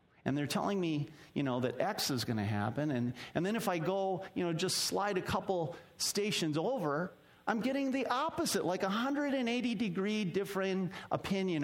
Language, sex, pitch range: English, male, 115-190 Hz